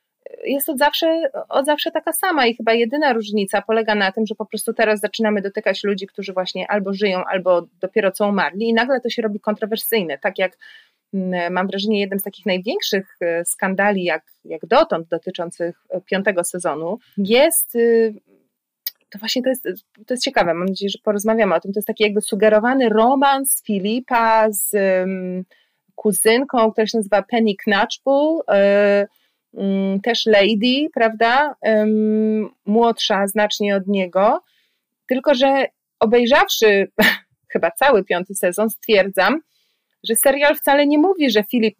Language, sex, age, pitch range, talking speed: Polish, female, 30-49, 195-235 Hz, 140 wpm